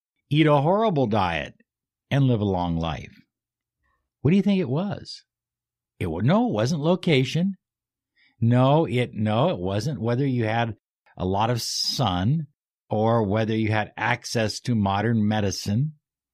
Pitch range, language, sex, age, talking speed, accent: 110-145 Hz, English, male, 60-79, 145 wpm, American